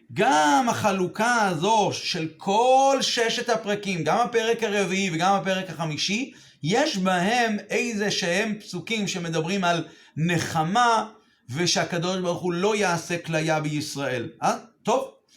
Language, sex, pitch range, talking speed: Hebrew, male, 170-220 Hz, 115 wpm